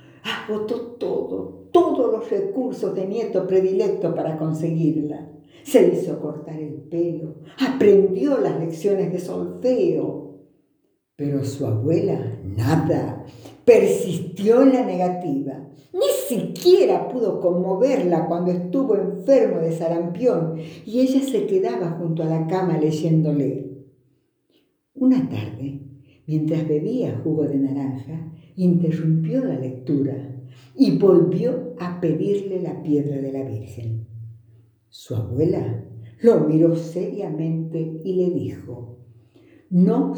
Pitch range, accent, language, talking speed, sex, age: 140-200 Hz, American, Spanish, 110 wpm, female, 60-79